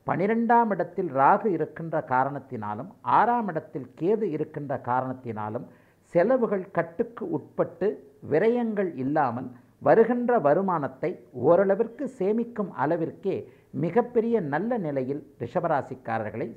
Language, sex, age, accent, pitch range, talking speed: Tamil, male, 50-69, native, 130-195 Hz, 85 wpm